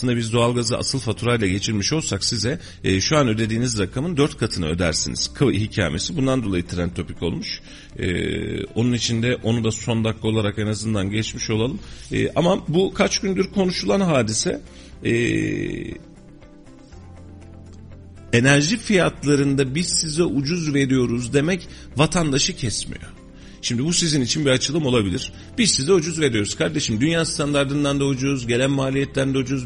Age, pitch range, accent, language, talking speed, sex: 40-59, 105-145 Hz, native, Turkish, 145 wpm, male